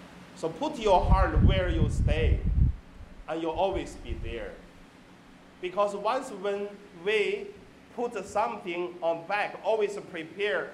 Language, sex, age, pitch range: Chinese, male, 30-49, 125-205 Hz